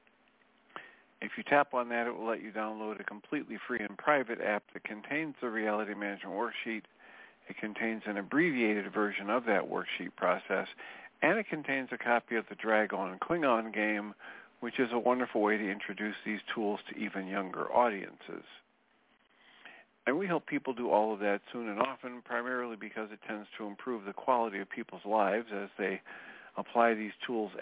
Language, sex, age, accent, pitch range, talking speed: English, male, 50-69, American, 105-130 Hz, 180 wpm